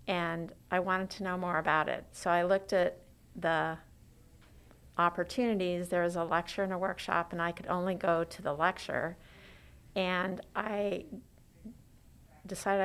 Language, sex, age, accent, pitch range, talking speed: English, female, 50-69, American, 165-190 Hz, 150 wpm